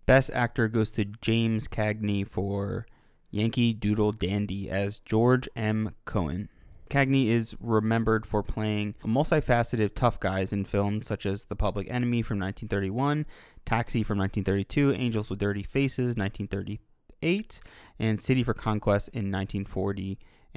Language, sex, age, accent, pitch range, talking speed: English, male, 20-39, American, 100-120 Hz, 130 wpm